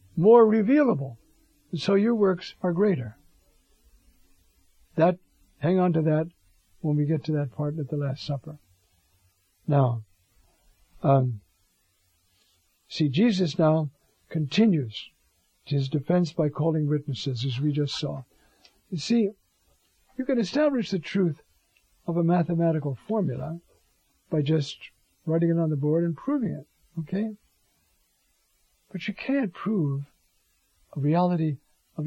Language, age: English, 60-79